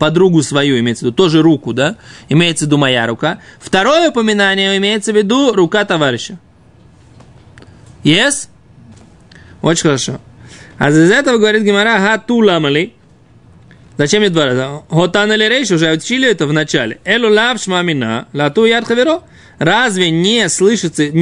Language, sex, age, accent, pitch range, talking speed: Russian, male, 20-39, native, 150-205 Hz, 120 wpm